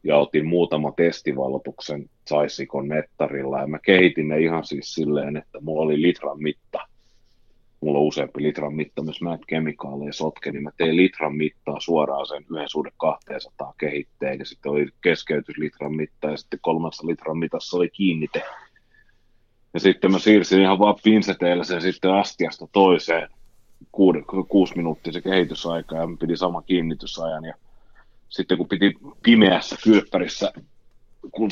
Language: Finnish